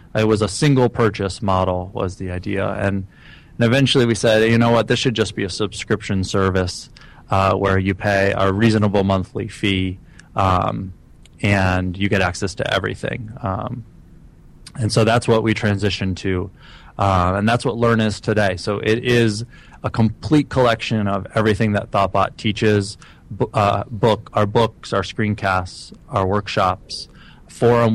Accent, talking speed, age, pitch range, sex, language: American, 160 wpm, 20-39, 95-110 Hz, male, English